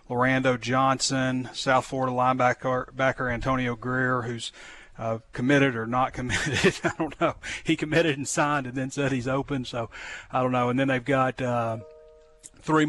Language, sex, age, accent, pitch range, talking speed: English, male, 40-59, American, 115-130 Hz, 160 wpm